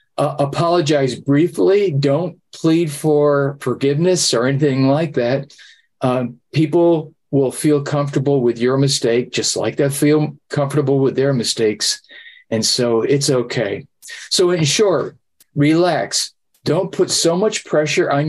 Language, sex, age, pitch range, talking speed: English, male, 40-59, 135-170 Hz, 135 wpm